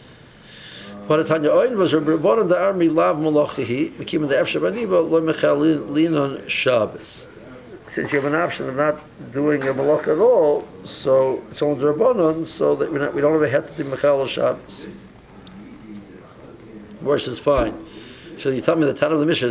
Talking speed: 125 wpm